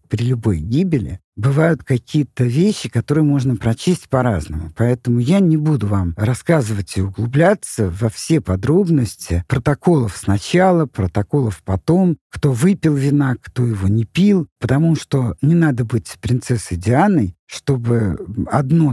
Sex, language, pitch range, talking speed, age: male, Russian, 105-150 Hz, 130 wpm, 50-69